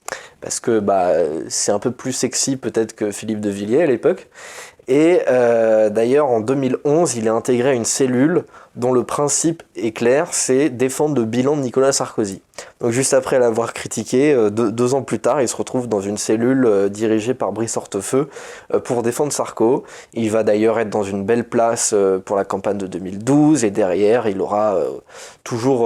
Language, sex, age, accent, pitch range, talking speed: French, male, 20-39, French, 110-140 Hz, 195 wpm